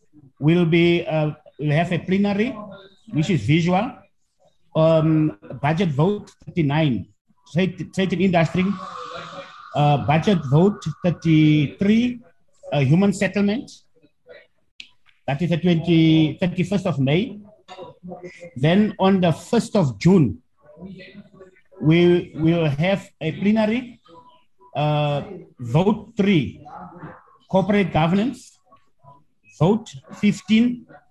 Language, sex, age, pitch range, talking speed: English, male, 50-69, 155-205 Hz, 95 wpm